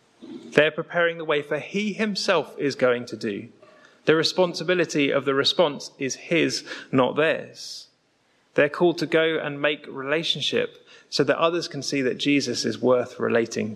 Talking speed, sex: 160 wpm, male